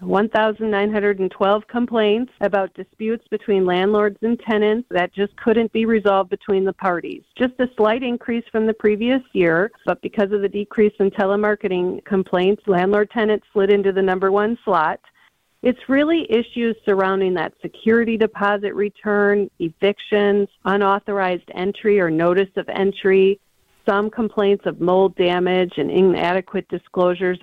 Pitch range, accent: 180-210 Hz, American